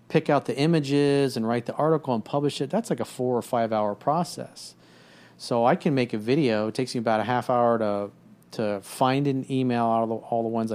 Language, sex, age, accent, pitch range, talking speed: English, male, 40-59, American, 105-130 Hz, 240 wpm